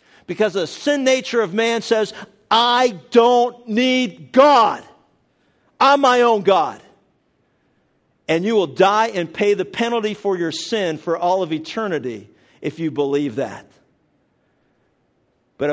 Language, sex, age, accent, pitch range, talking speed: English, male, 50-69, American, 165-210 Hz, 135 wpm